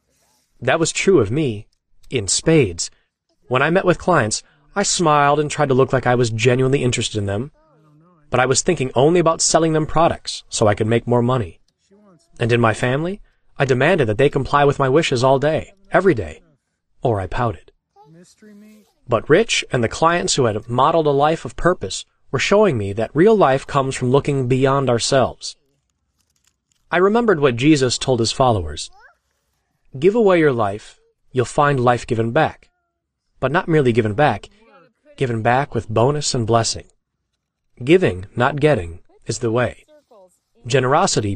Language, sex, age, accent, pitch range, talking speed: English, male, 30-49, American, 120-165 Hz, 170 wpm